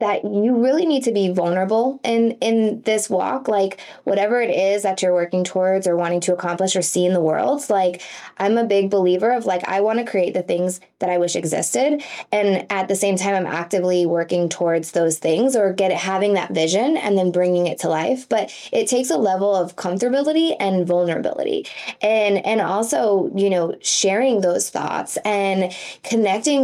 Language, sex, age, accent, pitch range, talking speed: English, female, 20-39, American, 185-230 Hz, 195 wpm